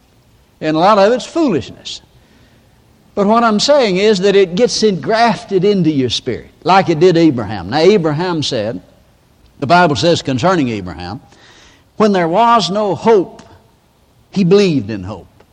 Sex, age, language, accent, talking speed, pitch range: male, 60-79, English, American, 150 wpm, 130-205 Hz